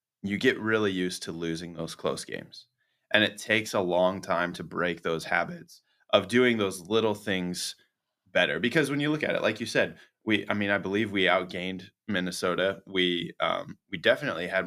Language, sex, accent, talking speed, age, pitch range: English, male, American, 190 wpm, 20-39, 90-110 Hz